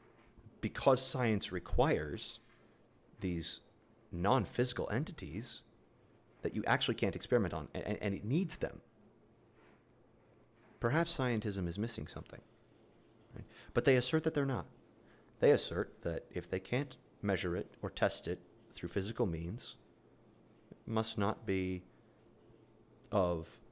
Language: English